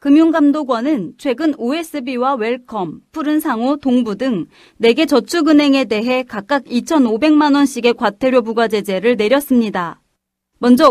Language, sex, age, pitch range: Korean, female, 30-49, 235-300 Hz